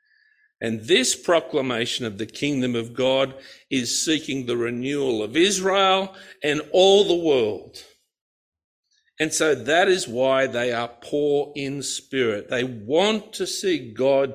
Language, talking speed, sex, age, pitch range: English, 140 wpm, male, 50-69, 115-160 Hz